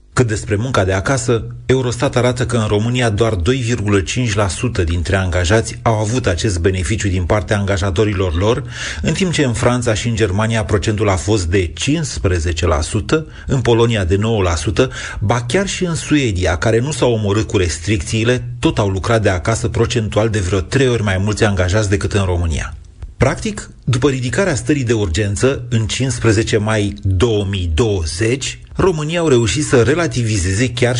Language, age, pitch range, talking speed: Romanian, 30-49, 100-125 Hz, 160 wpm